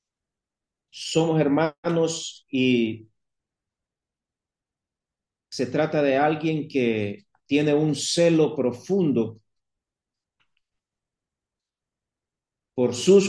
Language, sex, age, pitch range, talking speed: Spanish, male, 40-59, 115-150 Hz, 65 wpm